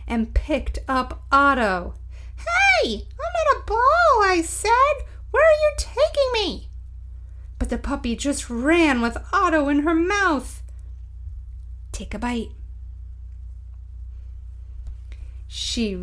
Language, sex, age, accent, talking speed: English, female, 30-49, American, 110 wpm